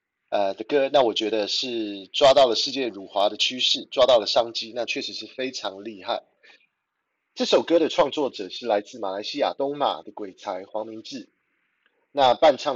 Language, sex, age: Chinese, male, 30-49